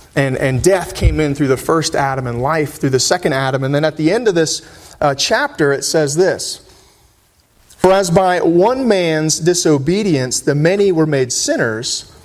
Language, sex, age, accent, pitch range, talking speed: English, male, 30-49, American, 140-185 Hz, 185 wpm